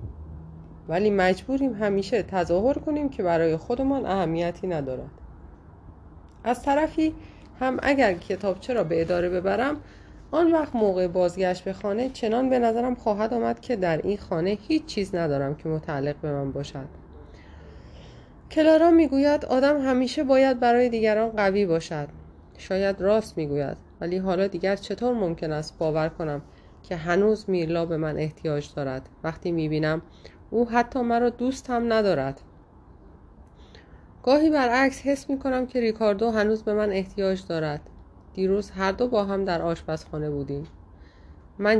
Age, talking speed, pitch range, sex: 30-49, 140 wpm, 145-230 Hz, female